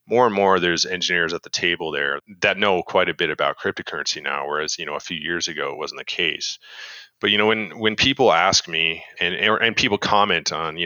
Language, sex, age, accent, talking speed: English, male, 30-49, American, 230 wpm